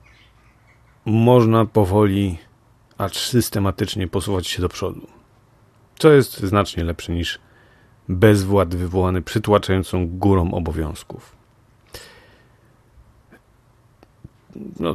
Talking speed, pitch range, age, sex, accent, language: 75 wpm, 90-115 Hz, 40-59, male, native, Polish